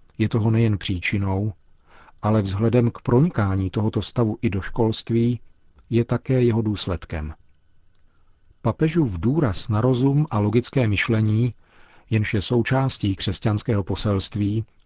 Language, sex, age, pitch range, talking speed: Czech, male, 40-59, 95-120 Hz, 115 wpm